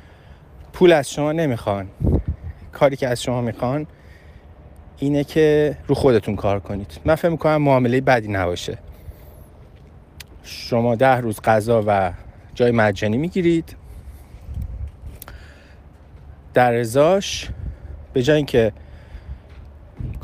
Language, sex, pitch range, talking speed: Persian, male, 90-150 Hz, 100 wpm